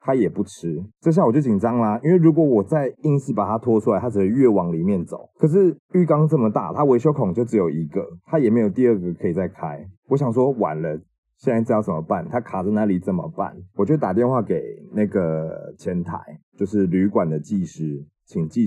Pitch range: 95-145 Hz